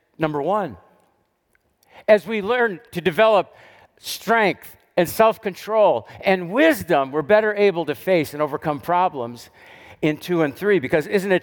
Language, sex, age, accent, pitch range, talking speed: English, male, 50-69, American, 155-195 Hz, 140 wpm